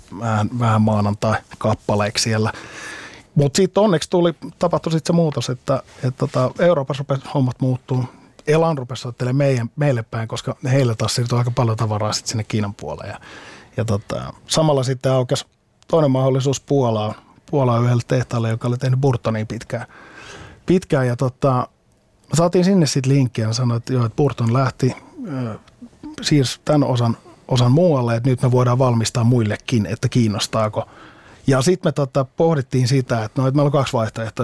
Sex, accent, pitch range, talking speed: male, native, 110-135 Hz, 155 wpm